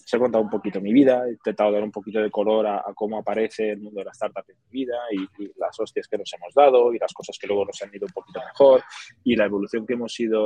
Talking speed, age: 295 wpm, 20-39